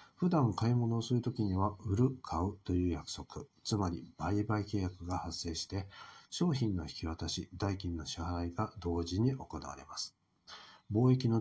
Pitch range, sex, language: 90-110 Hz, male, Japanese